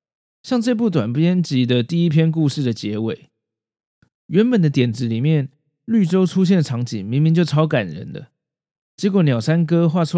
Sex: male